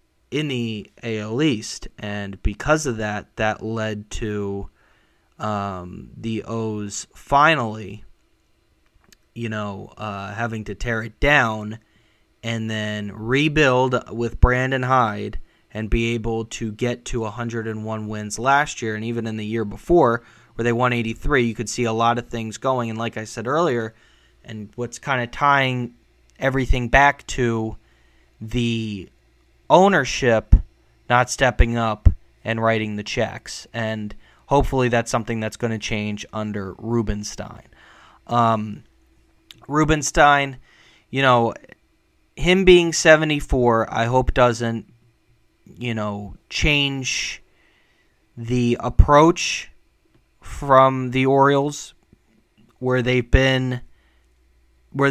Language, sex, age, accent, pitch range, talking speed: English, male, 20-39, American, 105-130 Hz, 120 wpm